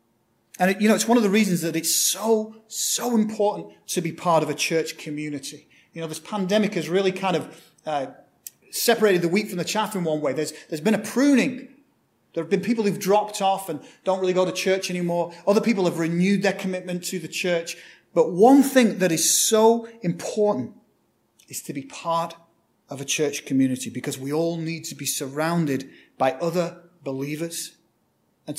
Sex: male